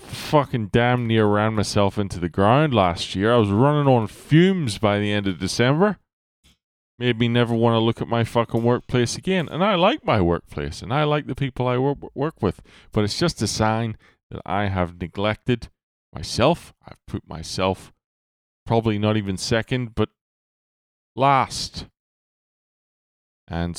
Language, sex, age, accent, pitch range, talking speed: English, male, 20-39, American, 85-115 Hz, 160 wpm